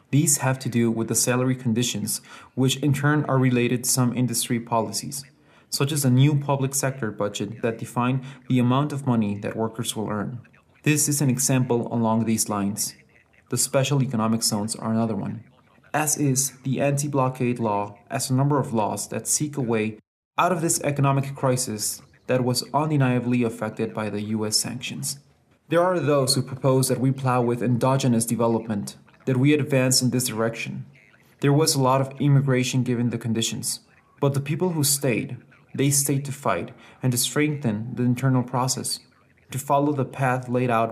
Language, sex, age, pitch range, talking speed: English, male, 30-49, 115-135 Hz, 180 wpm